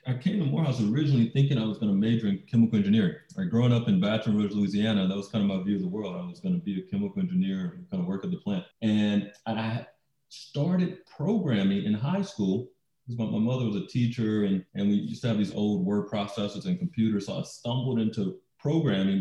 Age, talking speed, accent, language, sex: 30-49, 235 wpm, American, English, male